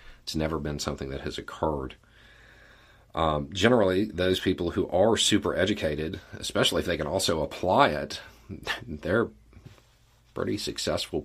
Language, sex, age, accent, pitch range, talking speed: English, male, 40-59, American, 80-110 Hz, 135 wpm